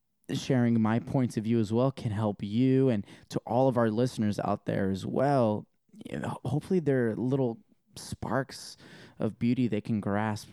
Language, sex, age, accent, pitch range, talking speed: English, male, 20-39, American, 80-125 Hz, 180 wpm